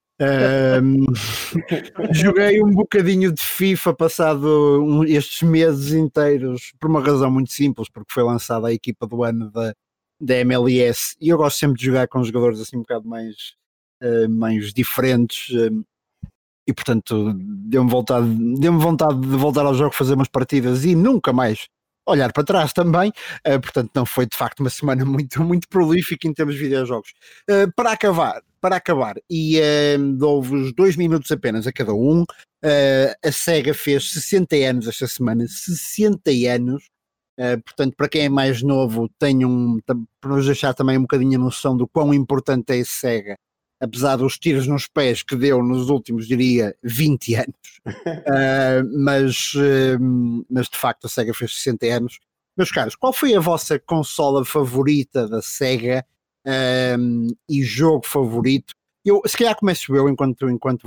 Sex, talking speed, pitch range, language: male, 160 wpm, 125-155 Hz, Portuguese